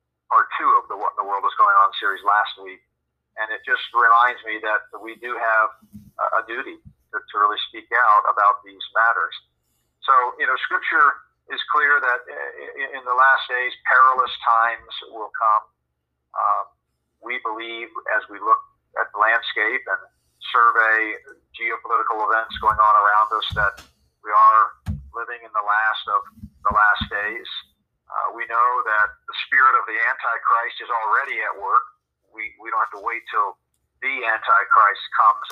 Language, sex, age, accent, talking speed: English, male, 50-69, American, 170 wpm